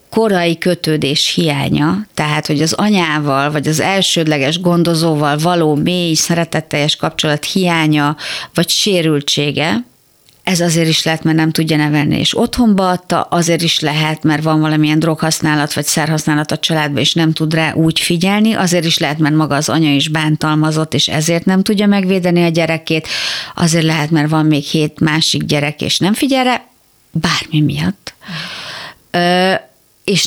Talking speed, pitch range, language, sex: 155 wpm, 150-180 Hz, Hungarian, female